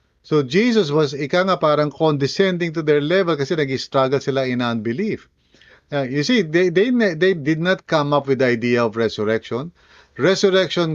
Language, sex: English, male